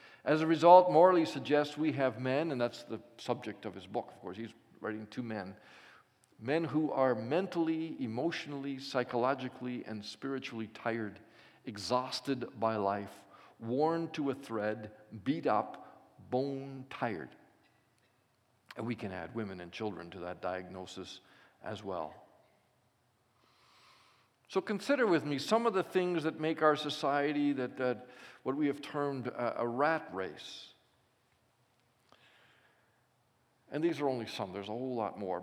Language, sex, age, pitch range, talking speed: English, male, 50-69, 110-140 Hz, 145 wpm